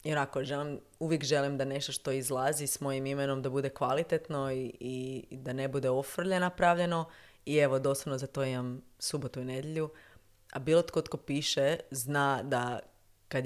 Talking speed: 175 wpm